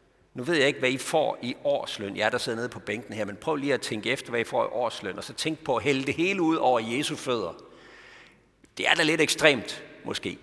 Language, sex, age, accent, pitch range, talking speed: Danish, male, 50-69, native, 135-200 Hz, 265 wpm